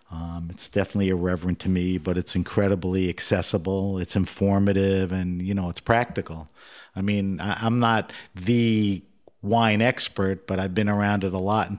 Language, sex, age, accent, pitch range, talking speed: English, male, 50-69, American, 90-105 Hz, 170 wpm